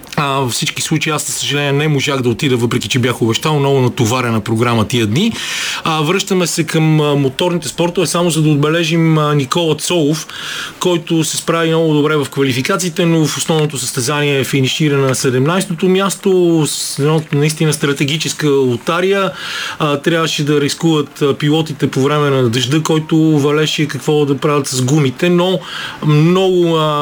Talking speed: 145 wpm